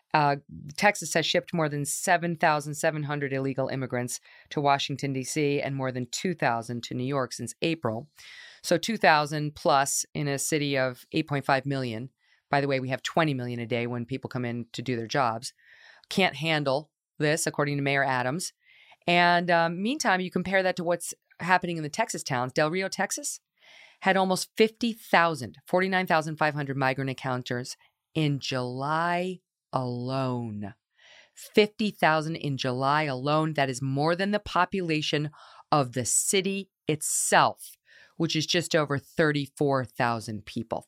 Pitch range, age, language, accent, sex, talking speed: 135-175 Hz, 40-59, English, American, female, 145 wpm